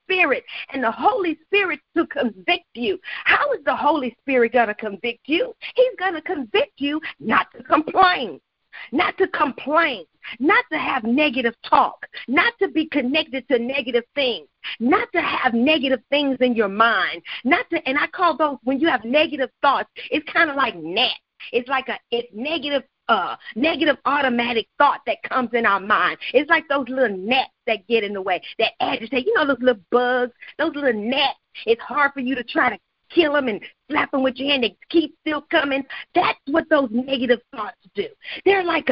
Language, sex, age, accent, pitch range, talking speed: English, female, 40-59, American, 250-335 Hz, 190 wpm